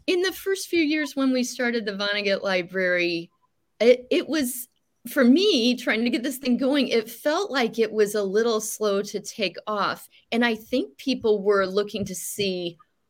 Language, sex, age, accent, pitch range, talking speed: English, female, 30-49, American, 185-240 Hz, 190 wpm